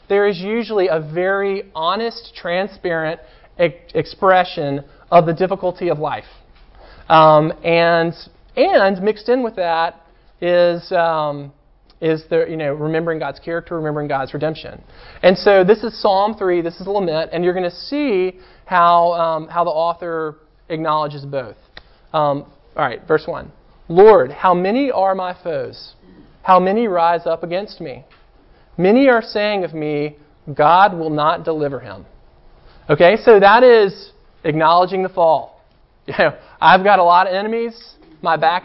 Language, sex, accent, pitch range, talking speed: English, male, American, 160-195 Hz, 150 wpm